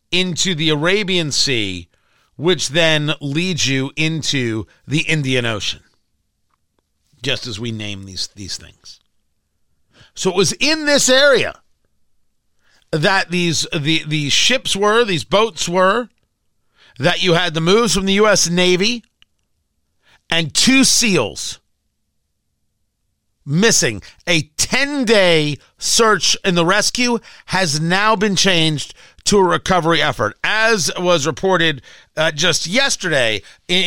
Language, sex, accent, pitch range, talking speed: English, male, American, 130-185 Hz, 120 wpm